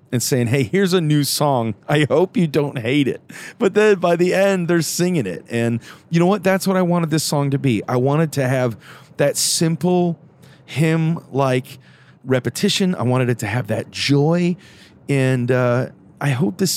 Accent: American